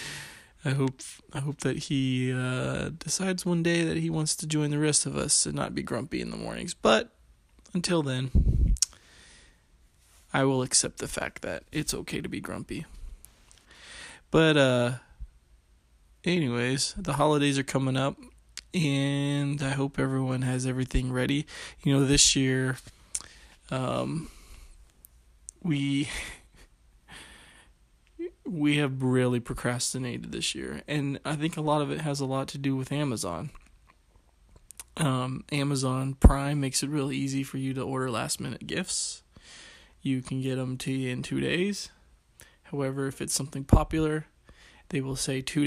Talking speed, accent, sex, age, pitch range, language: 150 wpm, American, male, 20-39, 130-150 Hz, English